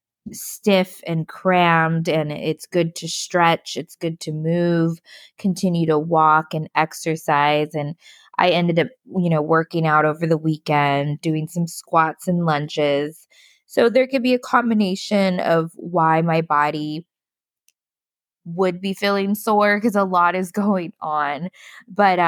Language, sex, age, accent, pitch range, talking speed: English, female, 20-39, American, 155-185 Hz, 145 wpm